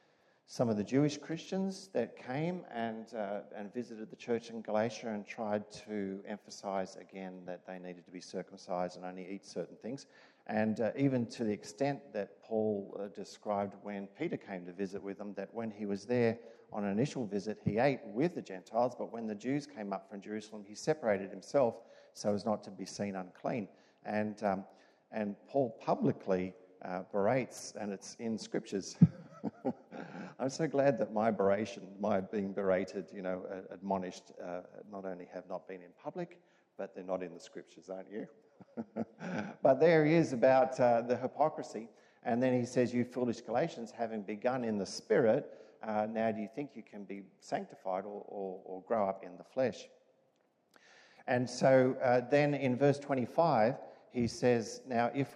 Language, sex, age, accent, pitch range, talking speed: English, male, 50-69, Australian, 100-125 Hz, 180 wpm